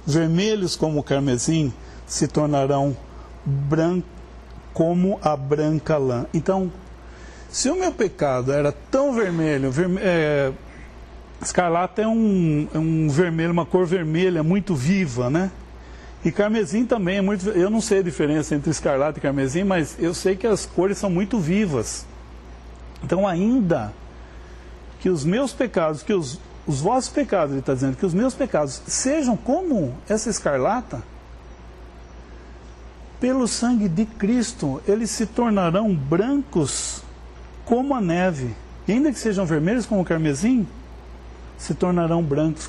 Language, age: English, 60-79